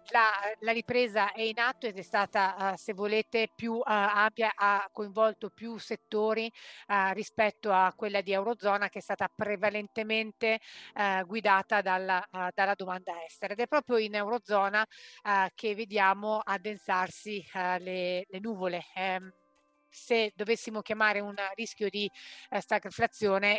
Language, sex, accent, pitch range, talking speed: Italian, female, native, 195-220 Hz, 125 wpm